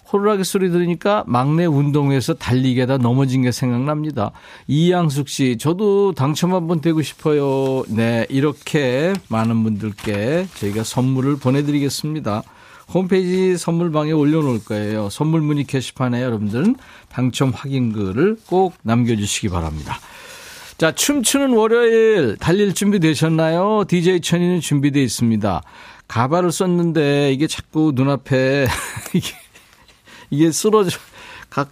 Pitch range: 125-175 Hz